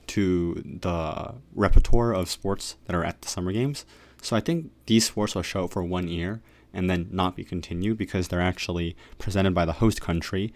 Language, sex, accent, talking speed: English, male, American, 200 wpm